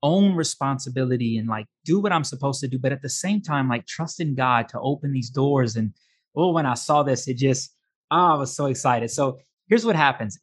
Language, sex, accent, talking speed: English, male, American, 230 wpm